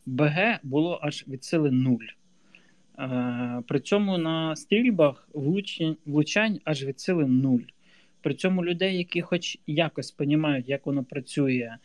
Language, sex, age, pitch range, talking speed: Ukrainian, male, 20-39, 135-170 Hz, 120 wpm